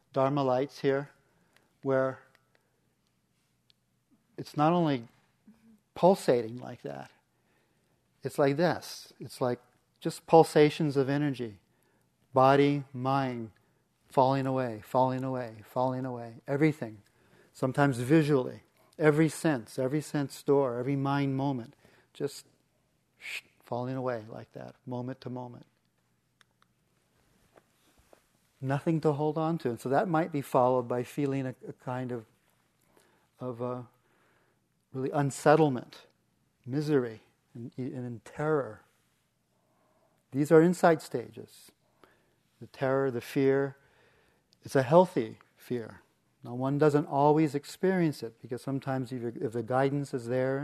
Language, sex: English, male